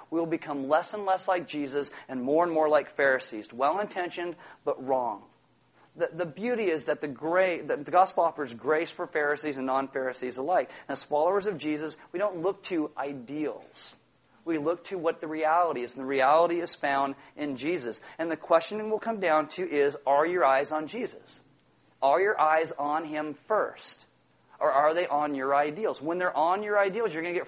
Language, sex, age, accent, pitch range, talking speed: English, male, 40-59, American, 140-185 Hz, 200 wpm